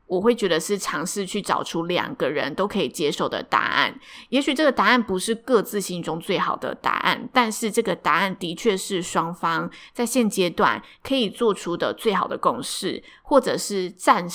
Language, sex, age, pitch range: Chinese, female, 20-39, 180-240 Hz